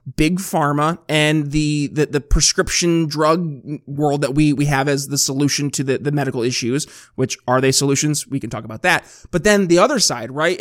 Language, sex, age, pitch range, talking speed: English, male, 20-39, 145-190 Hz, 205 wpm